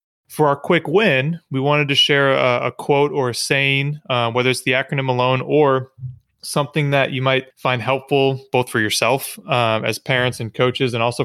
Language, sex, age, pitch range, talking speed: English, male, 30-49, 115-140 Hz, 195 wpm